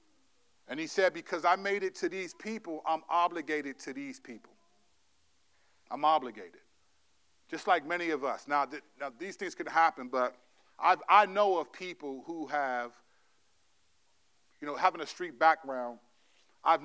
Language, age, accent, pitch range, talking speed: English, 40-59, American, 135-195 Hz, 155 wpm